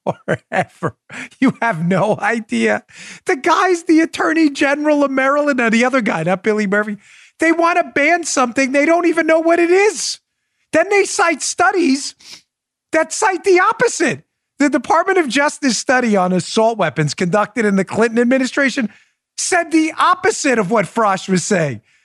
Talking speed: 165 wpm